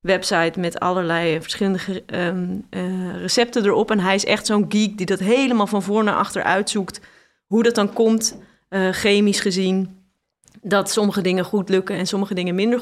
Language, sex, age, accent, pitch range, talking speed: Dutch, female, 30-49, Dutch, 190-240 Hz, 175 wpm